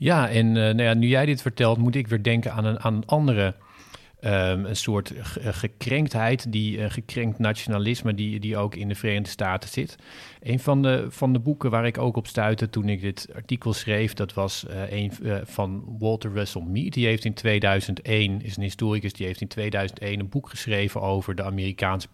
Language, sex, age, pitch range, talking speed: Dutch, male, 40-59, 100-120 Hz, 210 wpm